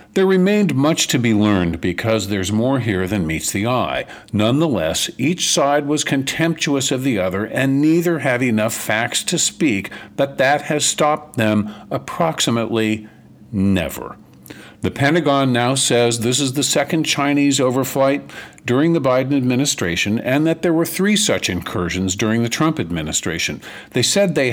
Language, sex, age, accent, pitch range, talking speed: English, male, 50-69, American, 110-140 Hz, 155 wpm